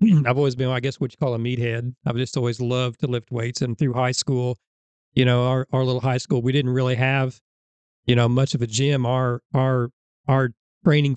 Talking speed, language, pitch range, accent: 225 wpm, English, 120-135 Hz, American